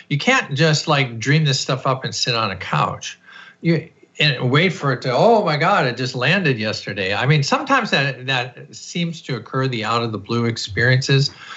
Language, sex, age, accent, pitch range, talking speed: English, male, 50-69, American, 120-150 Hz, 205 wpm